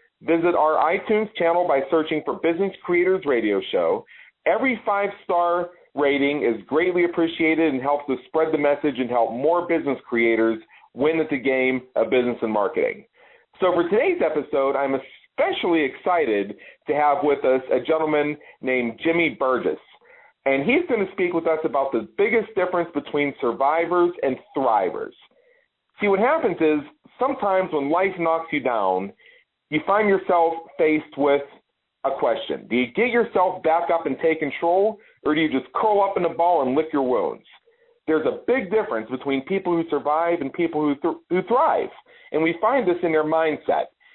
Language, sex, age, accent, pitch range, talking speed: English, male, 40-59, American, 140-195 Hz, 170 wpm